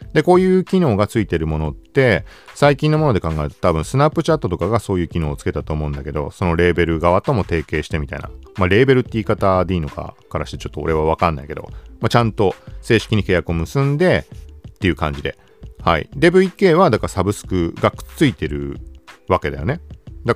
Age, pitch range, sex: 40-59, 80-125 Hz, male